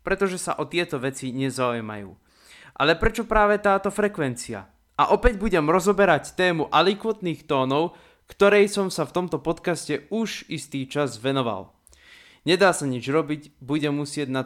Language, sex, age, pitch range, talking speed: Slovak, male, 20-39, 135-185 Hz, 145 wpm